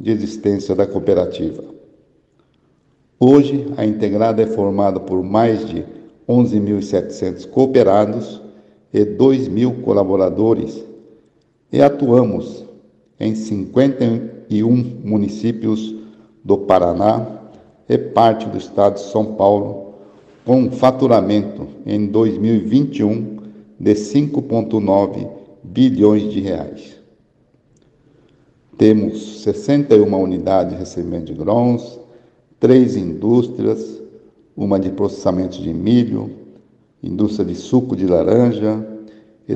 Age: 60-79